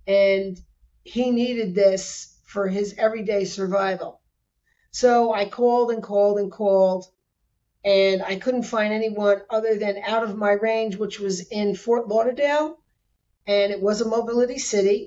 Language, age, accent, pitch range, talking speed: English, 40-59, American, 195-220 Hz, 145 wpm